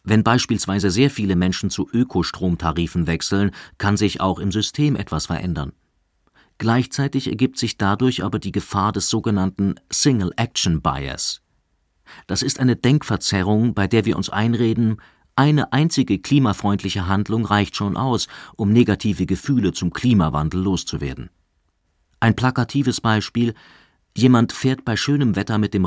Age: 40-59